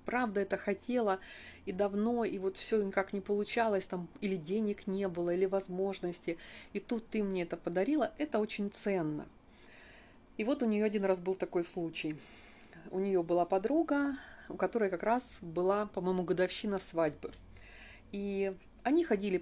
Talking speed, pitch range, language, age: 160 wpm, 185-230 Hz, Russian, 30-49